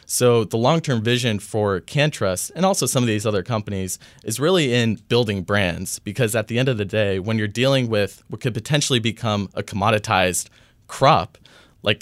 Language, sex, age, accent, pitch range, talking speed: English, male, 20-39, American, 100-120 Hz, 185 wpm